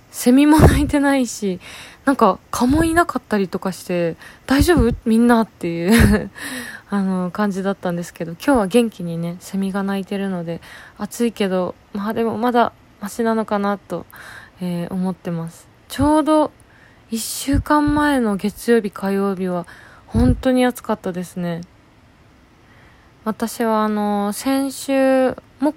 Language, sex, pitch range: Japanese, female, 185-245 Hz